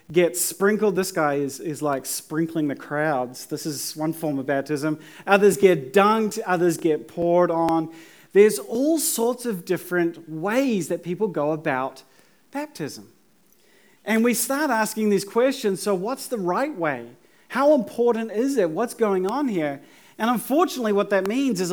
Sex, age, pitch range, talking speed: male, 40-59, 165-230 Hz, 165 wpm